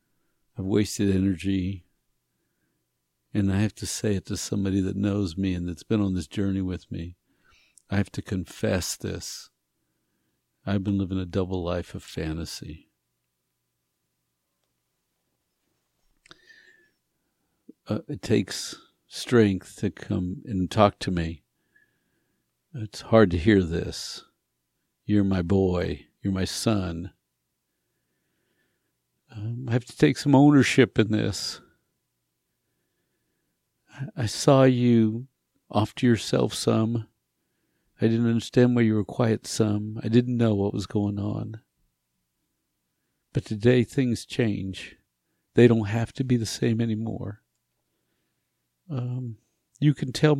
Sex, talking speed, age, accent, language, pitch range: male, 125 wpm, 60-79, American, English, 90-125 Hz